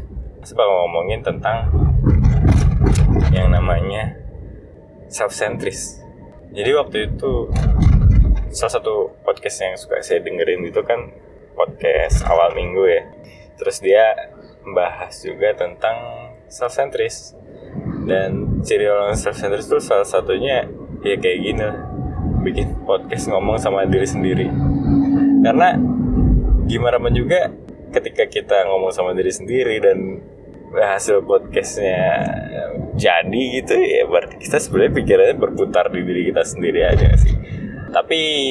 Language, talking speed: Indonesian, 115 wpm